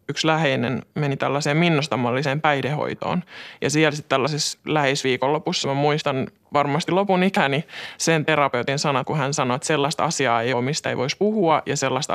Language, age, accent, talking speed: Finnish, 20-39, native, 165 wpm